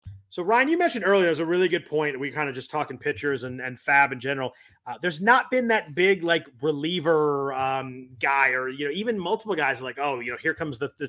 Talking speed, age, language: 255 wpm, 30-49, English